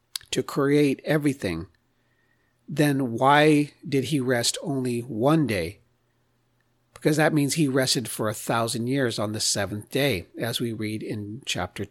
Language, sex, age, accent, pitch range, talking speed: English, male, 50-69, American, 120-150 Hz, 145 wpm